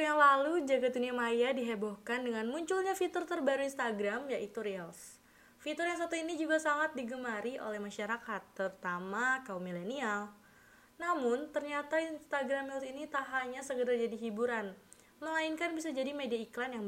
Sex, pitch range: female, 210-290 Hz